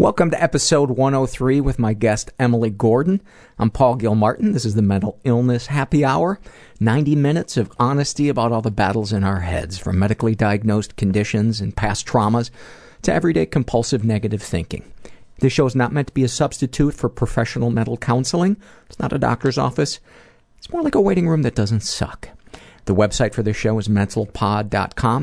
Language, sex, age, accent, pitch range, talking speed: English, male, 50-69, American, 105-135 Hz, 180 wpm